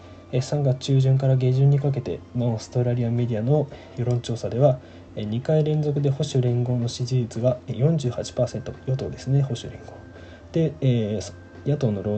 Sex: male